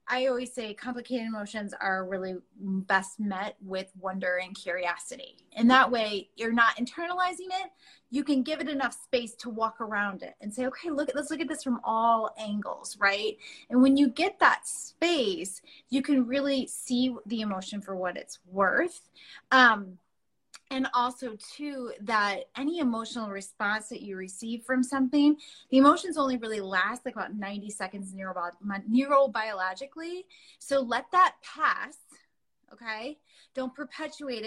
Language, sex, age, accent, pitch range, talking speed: English, female, 20-39, American, 200-275 Hz, 155 wpm